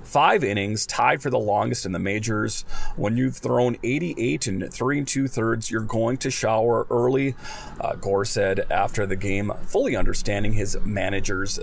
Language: English